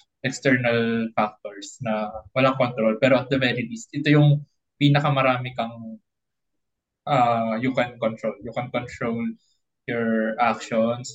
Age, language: 20-39, Filipino